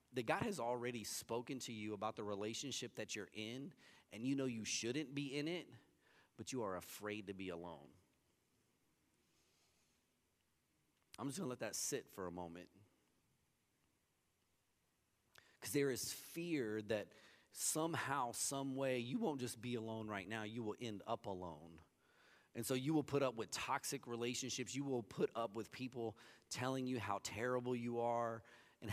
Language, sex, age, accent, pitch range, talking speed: English, male, 30-49, American, 105-130 Hz, 165 wpm